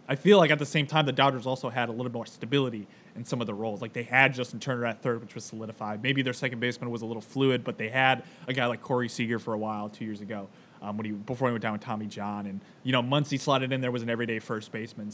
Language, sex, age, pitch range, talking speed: English, male, 20-39, 115-140 Hz, 295 wpm